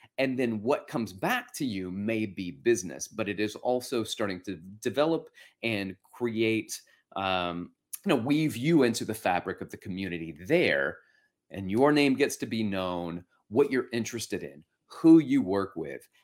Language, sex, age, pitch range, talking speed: English, male, 30-49, 100-140 Hz, 170 wpm